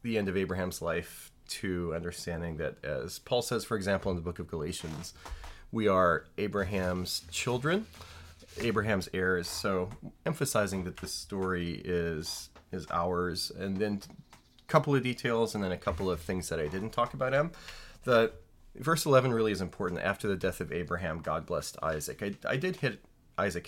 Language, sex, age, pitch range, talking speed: English, male, 30-49, 85-110 Hz, 175 wpm